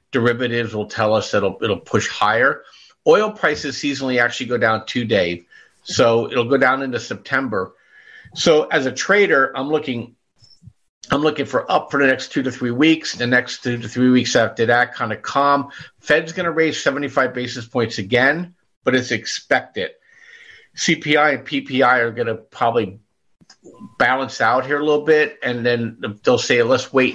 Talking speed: 170 wpm